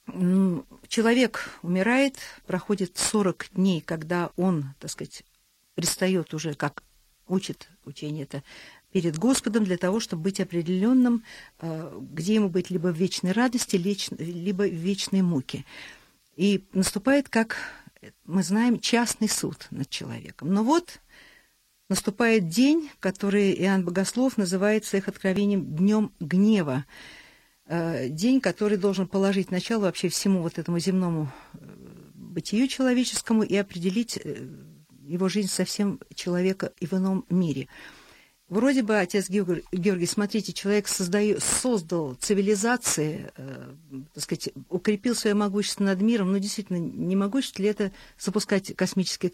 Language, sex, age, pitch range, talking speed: Russian, female, 50-69, 175-215 Hz, 120 wpm